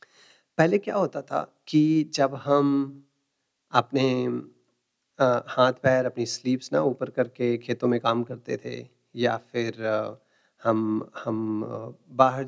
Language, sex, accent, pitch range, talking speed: Hindi, male, native, 120-140 Hz, 130 wpm